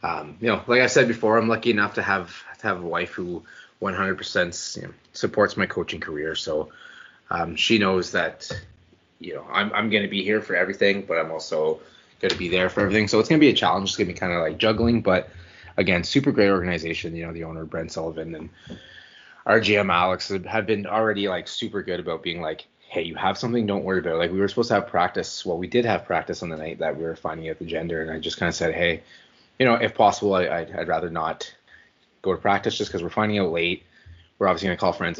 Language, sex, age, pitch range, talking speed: English, male, 20-39, 85-110 Hz, 250 wpm